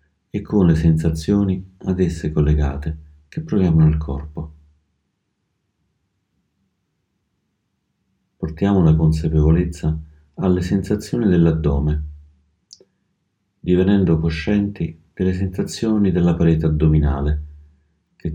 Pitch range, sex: 75-90 Hz, male